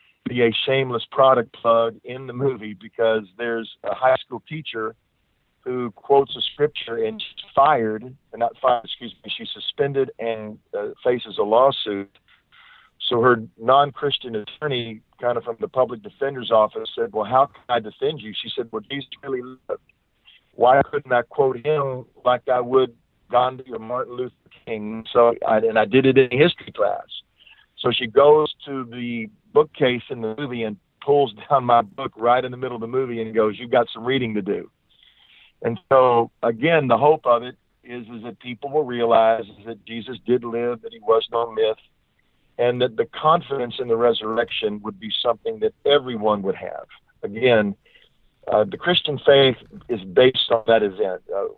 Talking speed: 180 wpm